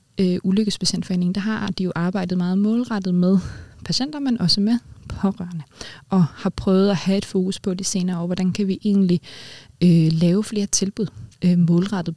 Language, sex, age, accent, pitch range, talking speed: Danish, female, 20-39, native, 170-200 Hz, 180 wpm